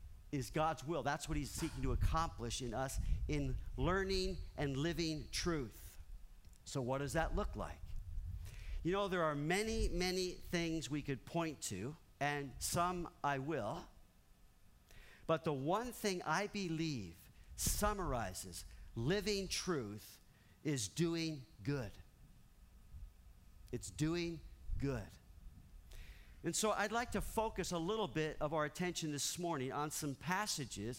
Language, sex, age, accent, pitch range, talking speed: English, male, 50-69, American, 110-170 Hz, 135 wpm